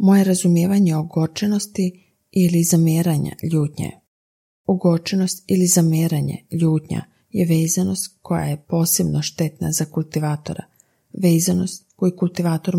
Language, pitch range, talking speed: Croatian, 155-180 Hz, 100 wpm